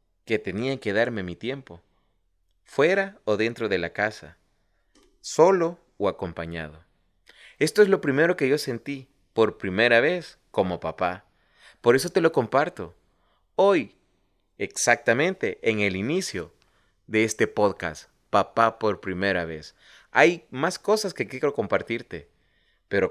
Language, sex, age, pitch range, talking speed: Spanish, male, 30-49, 95-145 Hz, 130 wpm